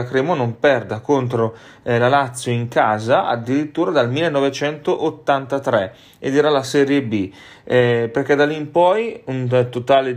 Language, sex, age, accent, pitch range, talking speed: Italian, male, 30-49, native, 115-145 Hz, 155 wpm